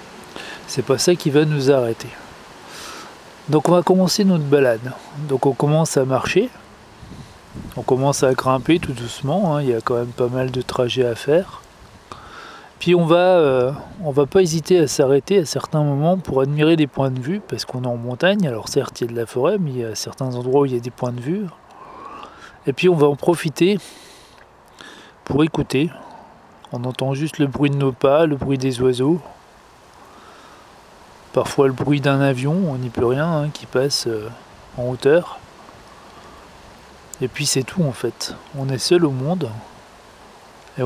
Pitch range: 125-155 Hz